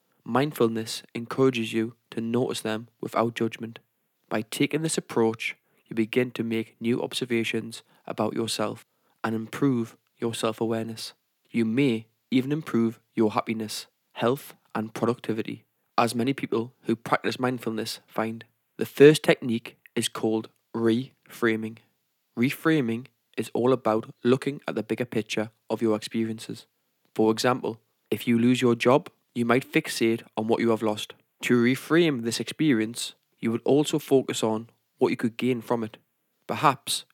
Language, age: English, 20-39